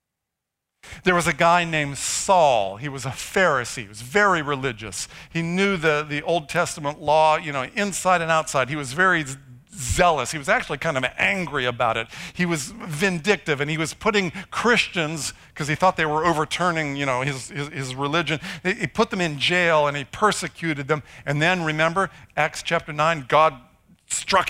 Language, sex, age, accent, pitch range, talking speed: English, male, 50-69, American, 135-170 Hz, 185 wpm